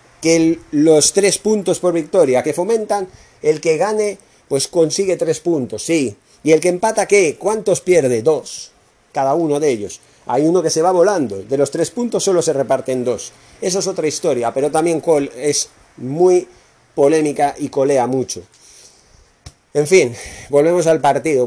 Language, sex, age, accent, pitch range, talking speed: Spanish, male, 40-59, Spanish, 135-170 Hz, 165 wpm